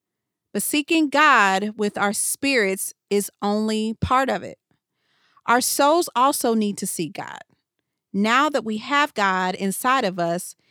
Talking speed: 145 wpm